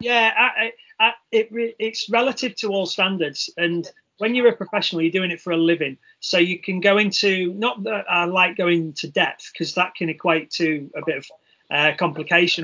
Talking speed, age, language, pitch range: 200 wpm, 30-49, English, 165-200 Hz